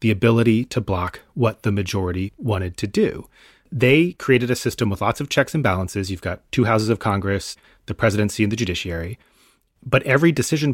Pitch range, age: 100-125 Hz, 30-49